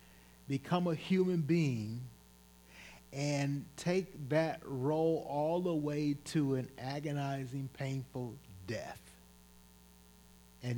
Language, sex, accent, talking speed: English, male, American, 95 wpm